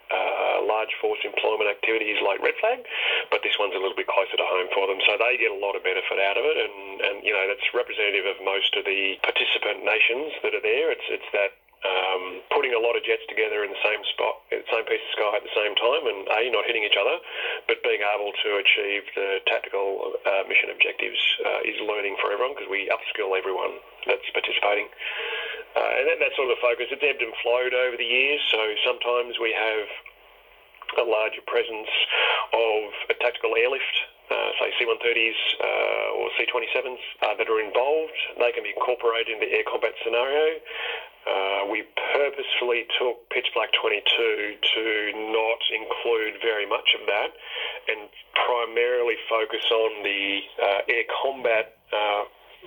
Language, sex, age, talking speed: English, male, 30-49, 180 wpm